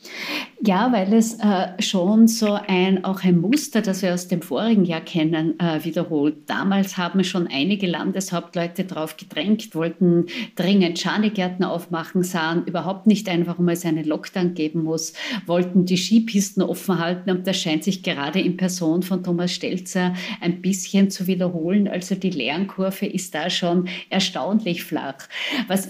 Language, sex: German, female